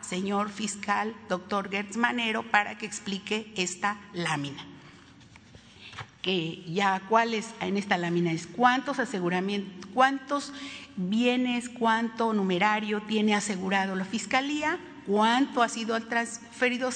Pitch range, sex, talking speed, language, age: 195-255 Hz, female, 110 wpm, Spanish, 50-69